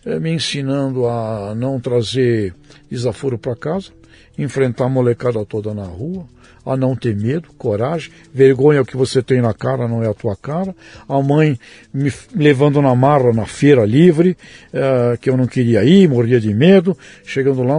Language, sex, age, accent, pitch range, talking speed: Portuguese, male, 60-79, Brazilian, 115-165 Hz, 175 wpm